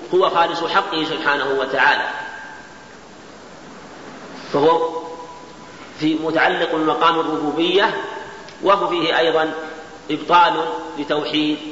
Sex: male